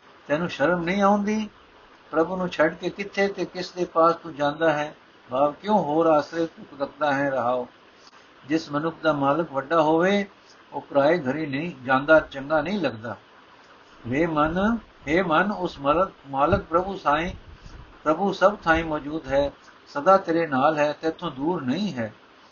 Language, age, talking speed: Punjabi, 60-79, 165 wpm